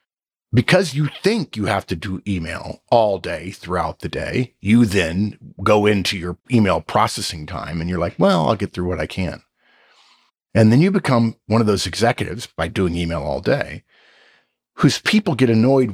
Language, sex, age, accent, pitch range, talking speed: English, male, 50-69, American, 95-130 Hz, 180 wpm